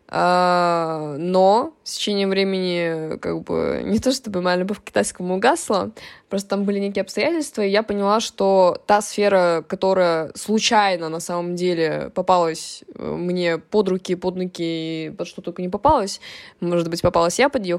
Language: Russian